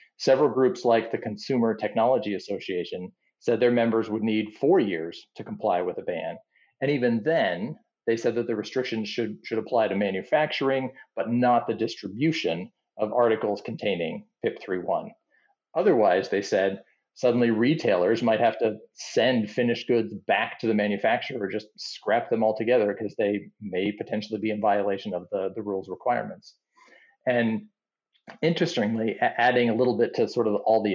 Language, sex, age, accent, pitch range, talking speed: English, male, 40-59, American, 105-125 Hz, 165 wpm